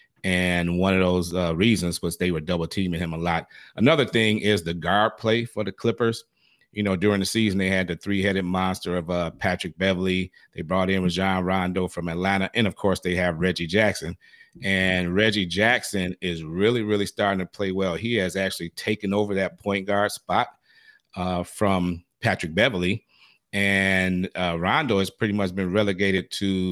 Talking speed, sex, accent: 185 wpm, male, American